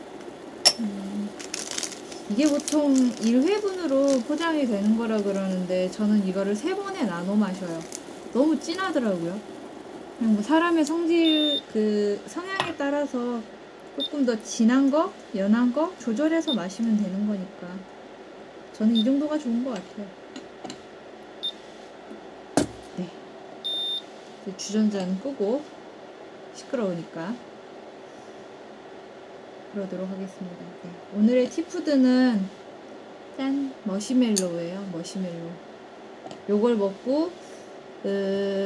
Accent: native